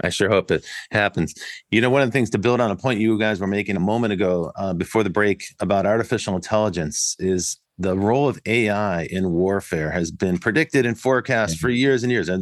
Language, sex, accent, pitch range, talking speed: English, male, American, 85-105 Hz, 225 wpm